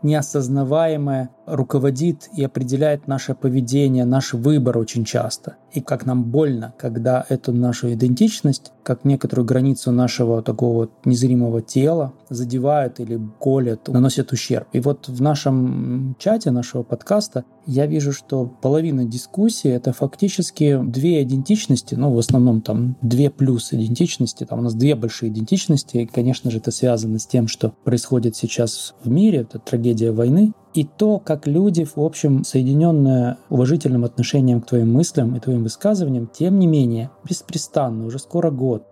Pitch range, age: 120-150 Hz, 20-39